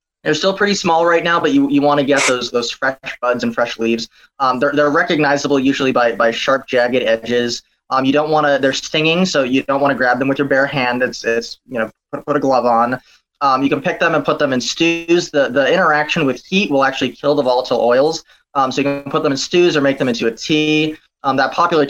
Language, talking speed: English, 260 wpm